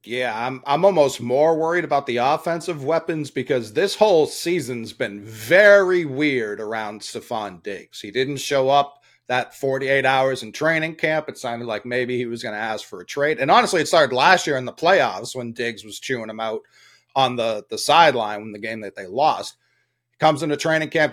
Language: English